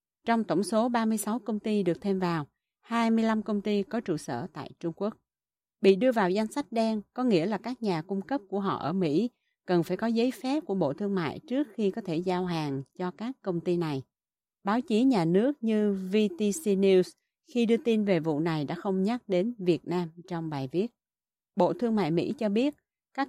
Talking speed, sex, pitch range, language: 215 wpm, female, 175-220 Hz, Vietnamese